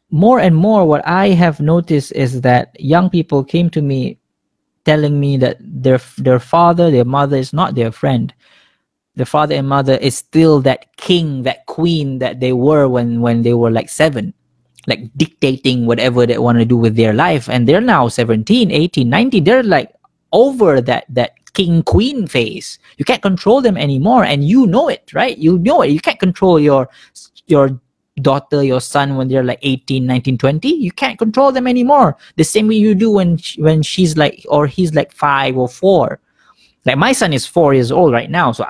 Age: 20-39